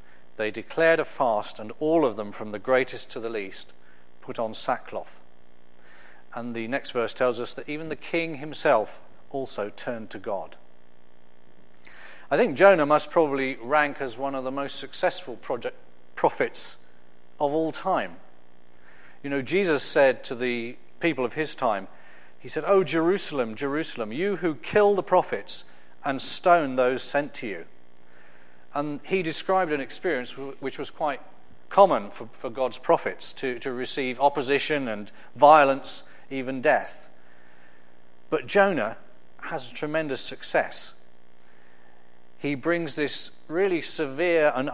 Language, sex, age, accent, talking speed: English, male, 40-59, British, 140 wpm